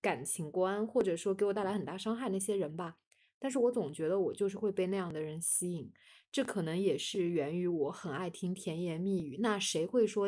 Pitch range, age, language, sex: 180-220 Hz, 20-39, Chinese, female